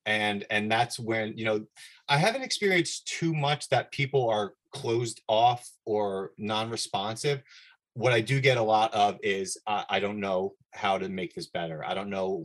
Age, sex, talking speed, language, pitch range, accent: 30-49, male, 185 wpm, English, 105-135 Hz, American